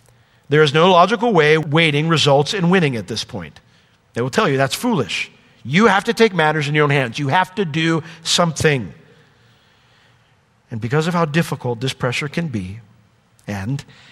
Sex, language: male, English